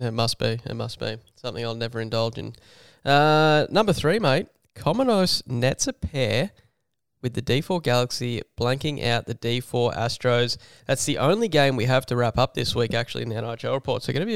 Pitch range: 120-140 Hz